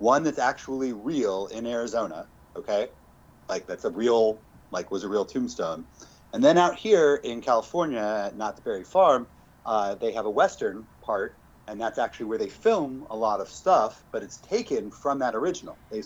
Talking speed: 185 wpm